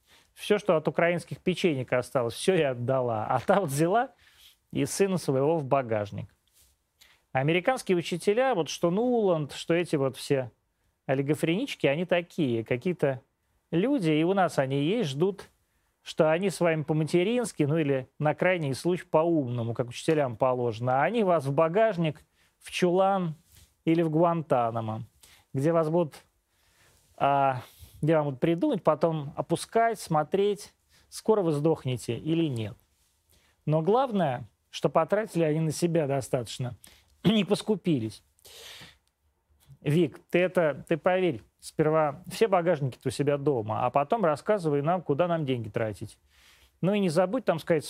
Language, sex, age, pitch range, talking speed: Russian, male, 30-49, 125-175 Hz, 140 wpm